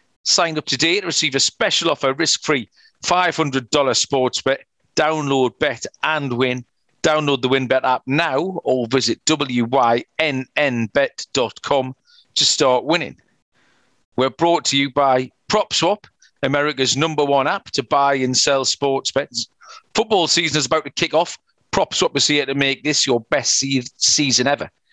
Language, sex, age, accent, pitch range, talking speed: English, male, 40-59, British, 130-155 Hz, 145 wpm